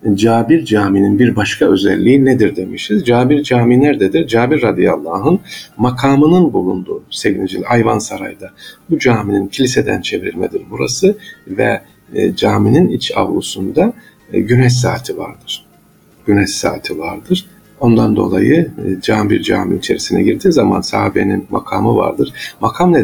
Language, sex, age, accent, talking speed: Turkish, male, 50-69, native, 115 wpm